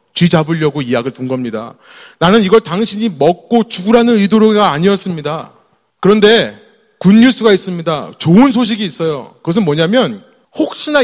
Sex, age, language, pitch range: male, 30-49, Korean, 170-240 Hz